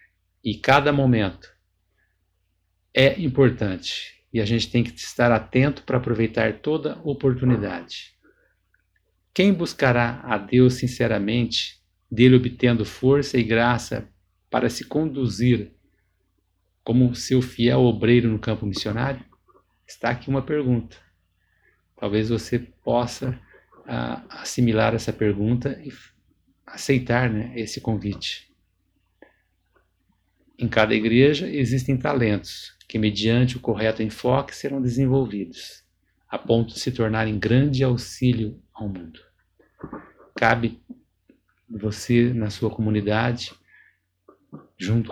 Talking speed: 105 wpm